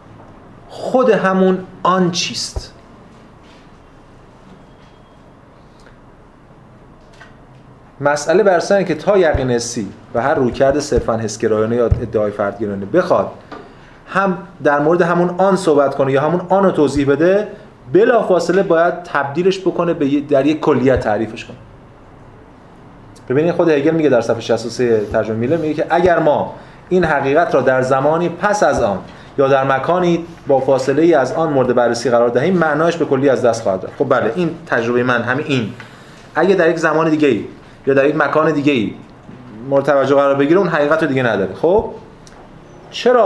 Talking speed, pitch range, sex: 155 wpm, 130-175 Hz, male